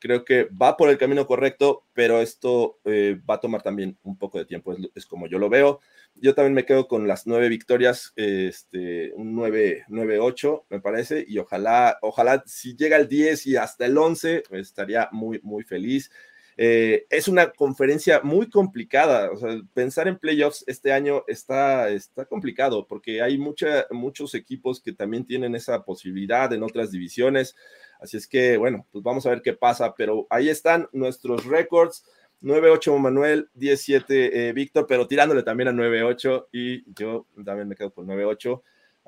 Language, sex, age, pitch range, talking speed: English, male, 30-49, 115-150 Hz, 175 wpm